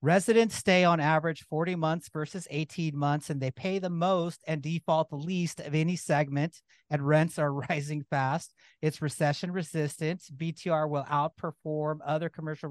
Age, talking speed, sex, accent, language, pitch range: 40-59, 160 wpm, male, American, English, 145-170 Hz